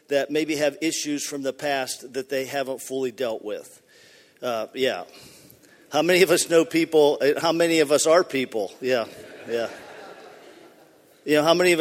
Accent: American